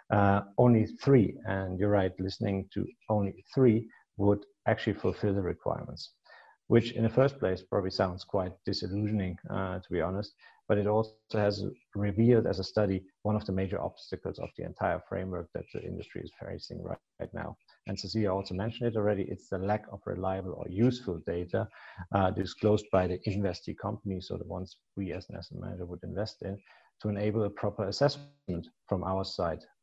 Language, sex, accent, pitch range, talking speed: English, male, German, 95-110 Hz, 185 wpm